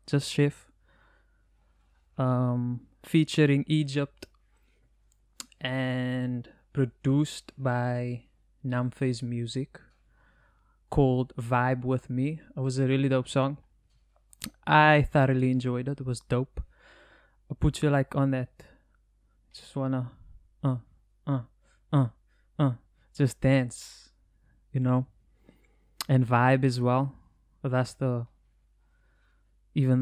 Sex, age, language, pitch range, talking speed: male, 20-39, English, 125-140 Hz, 100 wpm